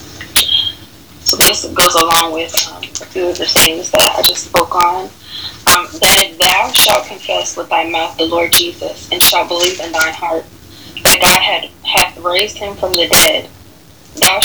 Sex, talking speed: female, 175 wpm